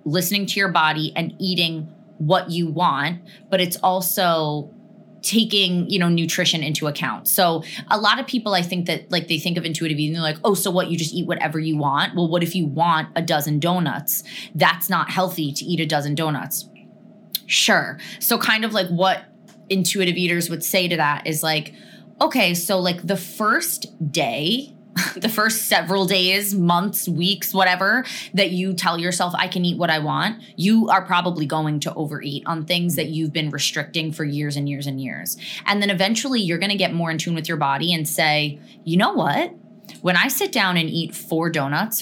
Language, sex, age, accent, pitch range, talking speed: English, female, 20-39, American, 160-200 Hz, 200 wpm